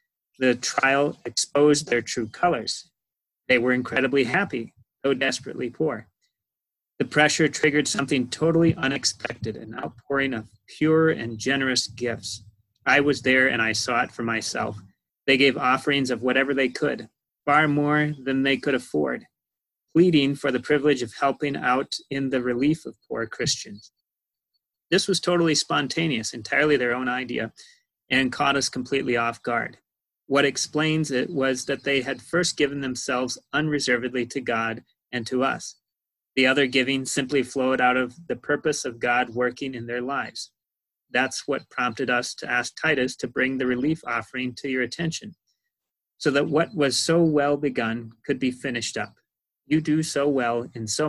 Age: 30-49